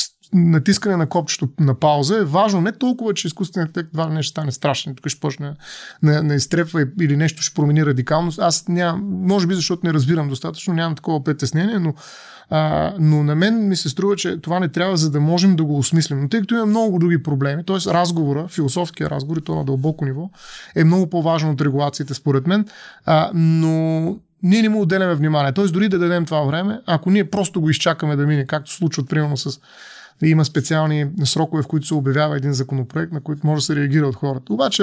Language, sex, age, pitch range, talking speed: Bulgarian, male, 30-49, 150-185 Hz, 210 wpm